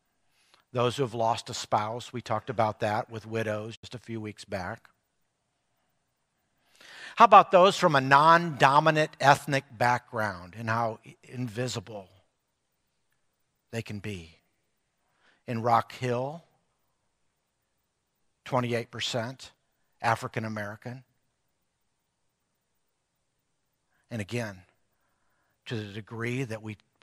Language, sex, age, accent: English, male, 50-69, American